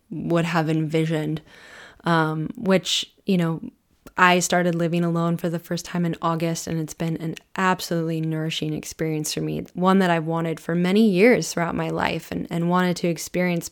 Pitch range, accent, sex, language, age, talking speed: 165-185 Hz, American, female, English, 10-29, 180 wpm